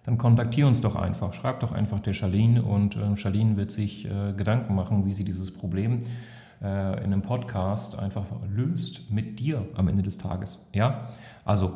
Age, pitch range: 30-49, 95-115 Hz